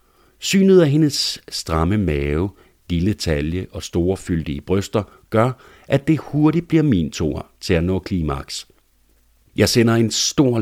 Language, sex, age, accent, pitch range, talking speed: Danish, male, 60-79, native, 85-120 Hz, 145 wpm